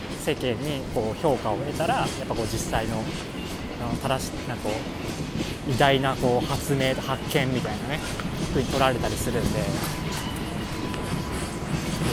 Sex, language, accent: male, Japanese, native